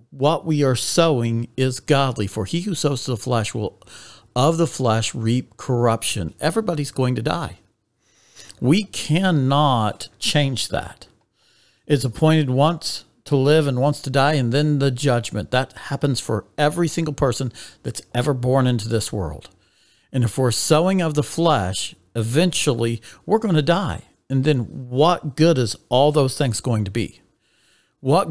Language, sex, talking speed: English, male, 160 wpm